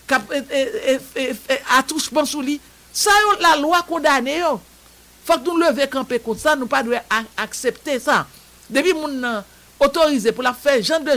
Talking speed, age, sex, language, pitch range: 135 wpm, 60-79, male, English, 220-305 Hz